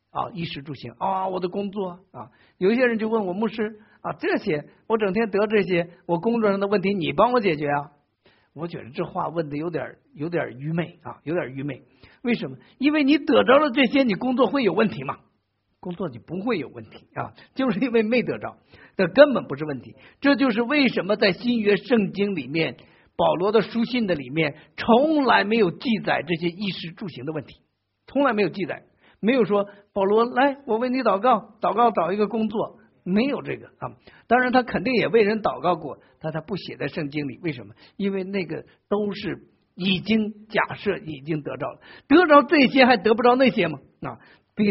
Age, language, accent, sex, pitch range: 50-69, Chinese, native, male, 160-230 Hz